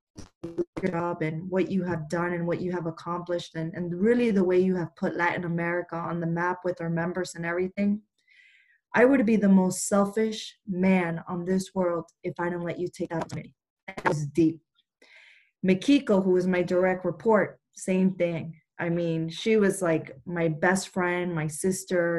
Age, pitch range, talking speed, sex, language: 20-39, 170-200 Hz, 180 wpm, female, English